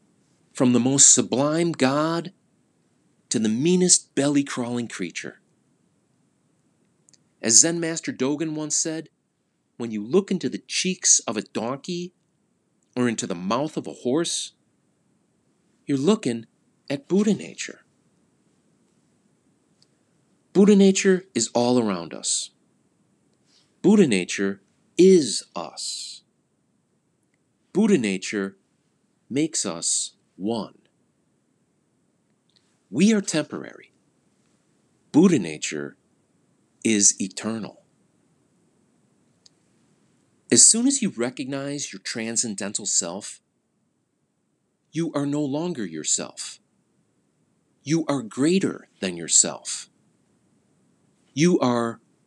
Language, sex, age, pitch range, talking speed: English, male, 40-59, 120-180 Hz, 90 wpm